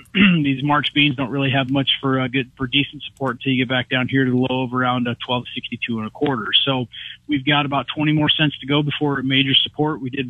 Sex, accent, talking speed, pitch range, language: male, American, 250 wpm, 130-145 Hz, English